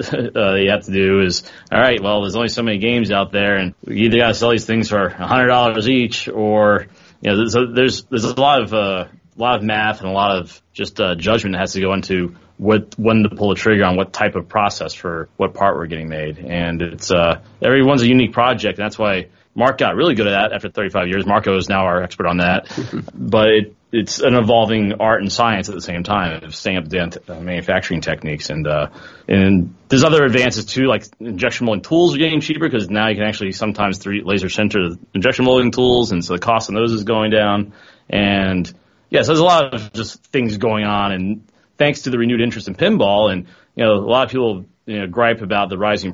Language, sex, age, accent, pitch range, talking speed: English, male, 30-49, American, 95-115 Hz, 240 wpm